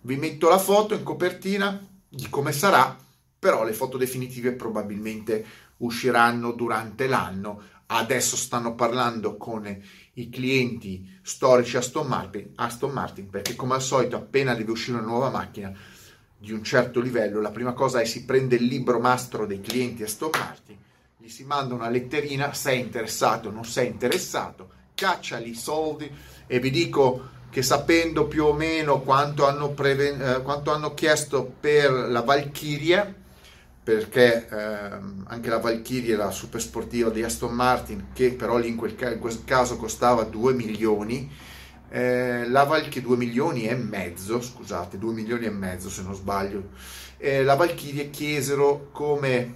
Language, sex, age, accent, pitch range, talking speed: Italian, male, 30-49, native, 110-135 Hz, 160 wpm